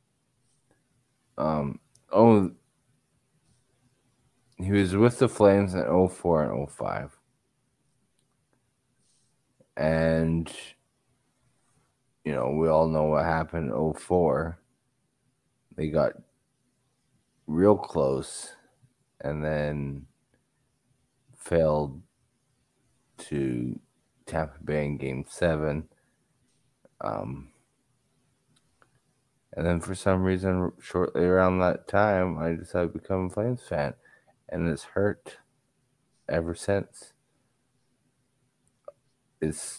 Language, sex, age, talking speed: English, male, 30-49, 85 wpm